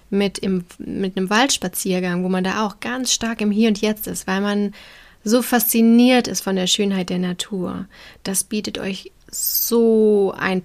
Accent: German